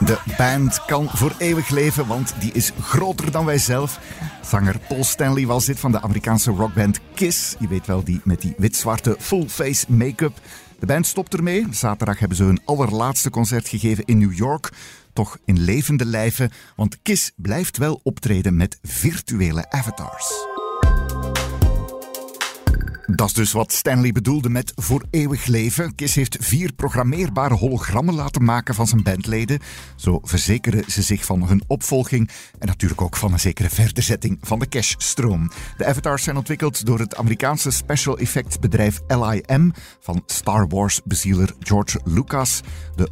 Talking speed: 160 wpm